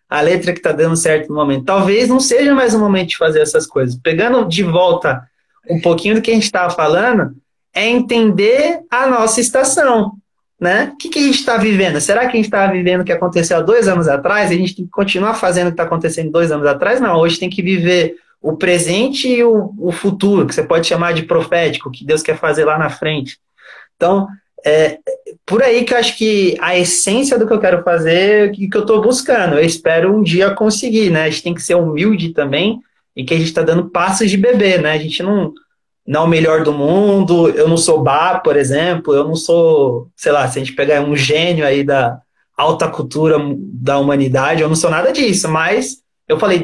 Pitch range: 160-225 Hz